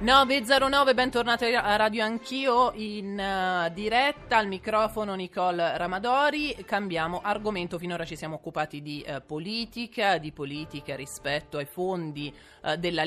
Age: 30-49